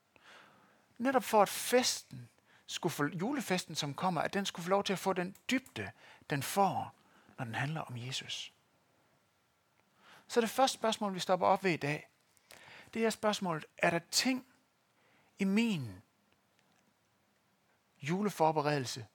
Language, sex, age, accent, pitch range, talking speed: Danish, male, 60-79, native, 150-215 Hz, 140 wpm